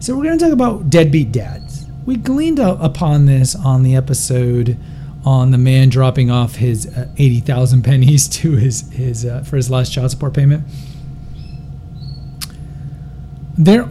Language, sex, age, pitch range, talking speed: English, male, 40-59, 125-145 Hz, 150 wpm